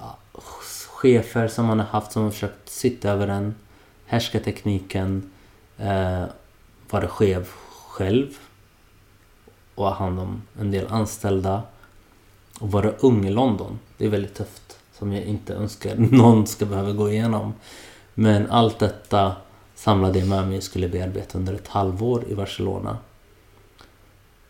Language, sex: English, male